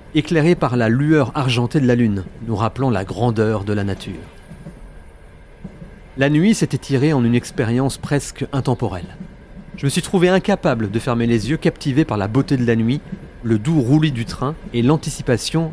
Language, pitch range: French, 115-150 Hz